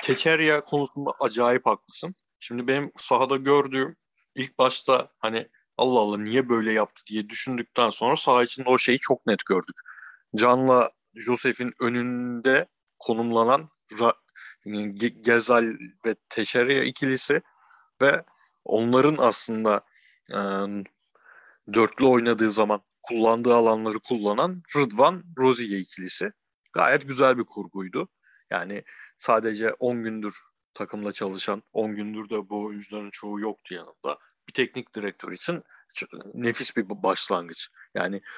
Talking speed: 115 wpm